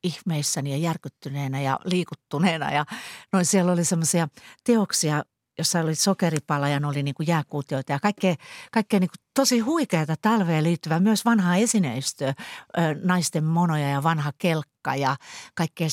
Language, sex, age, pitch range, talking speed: Finnish, female, 50-69, 150-200 Hz, 145 wpm